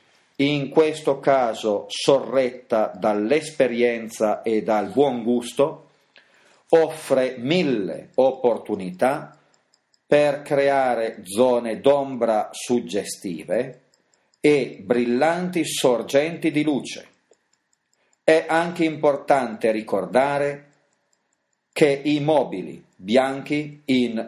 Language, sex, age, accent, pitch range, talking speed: Italian, male, 40-59, native, 120-155 Hz, 75 wpm